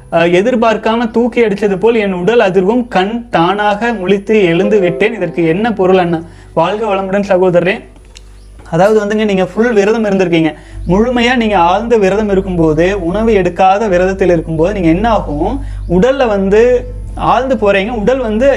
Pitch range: 175-225 Hz